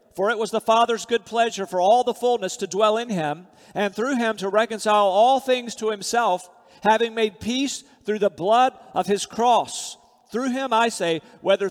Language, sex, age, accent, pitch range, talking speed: English, male, 50-69, American, 180-225 Hz, 195 wpm